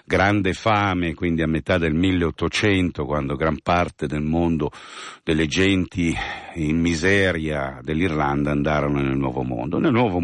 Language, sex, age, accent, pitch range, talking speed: Italian, male, 50-69, native, 75-95 Hz, 135 wpm